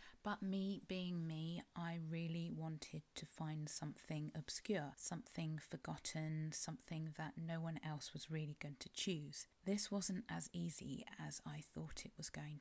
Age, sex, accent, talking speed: 30-49, female, British, 155 wpm